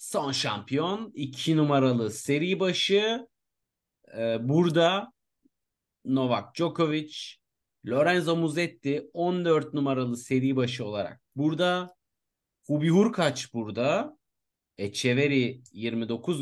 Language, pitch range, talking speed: Turkish, 120-150 Hz, 85 wpm